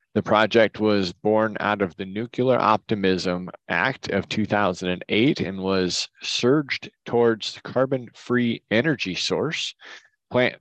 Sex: male